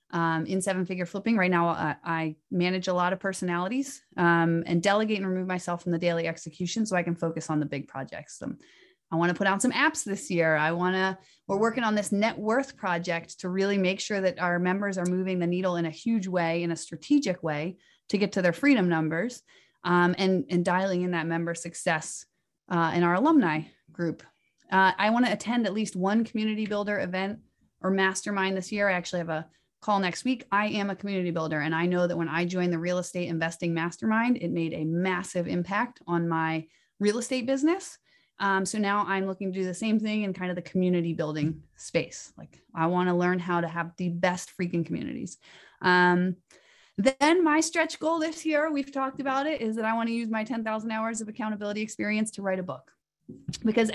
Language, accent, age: English, American, 30-49